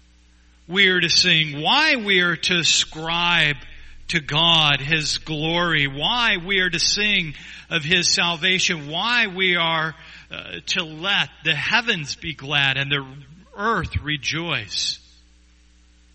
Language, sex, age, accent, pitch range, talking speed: English, male, 50-69, American, 140-180 Hz, 130 wpm